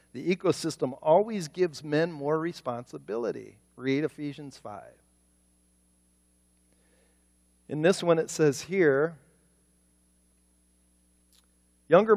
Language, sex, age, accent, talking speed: English, male, 50-69, American, 85 wpm